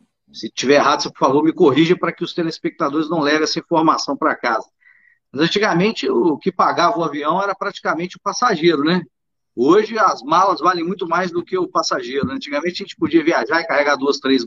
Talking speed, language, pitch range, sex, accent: 200 wpm, Portuguese, 130-185 Hz, male, Brazilian